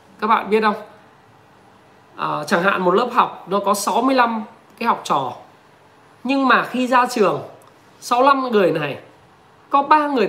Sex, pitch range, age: male, 180-250 Hz, 20-39